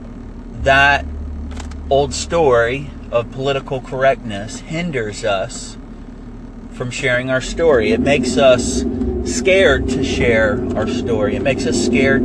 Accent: American